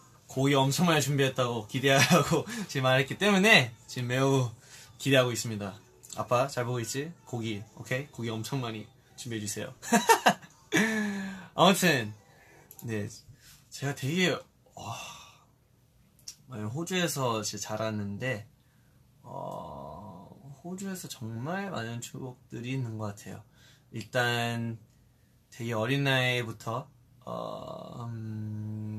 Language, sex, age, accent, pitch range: Korean, male, 20-39, native, 110-140 Hz